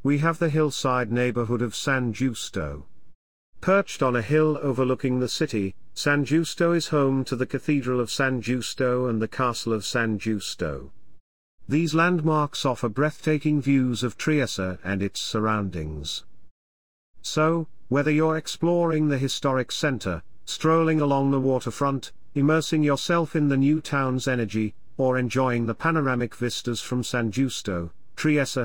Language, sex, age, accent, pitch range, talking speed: English, male, 40-59, British, 110-150 Hz, 140 wpm